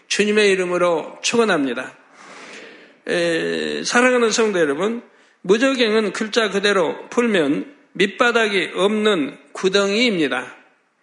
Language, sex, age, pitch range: Korean, male, 60-79, 190-230 Hz